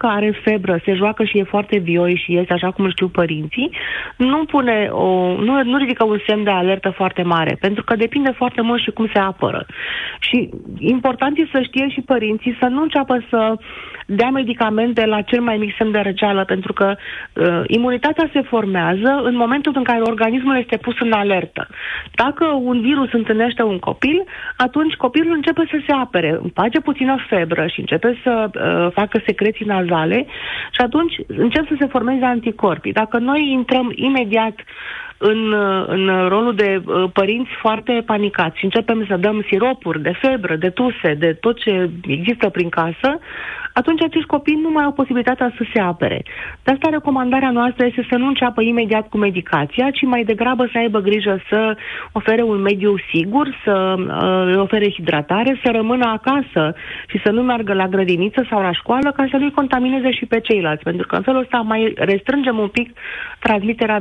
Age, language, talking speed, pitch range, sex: 30-49, Romanian, 180 wpm, 195-260 Hz, female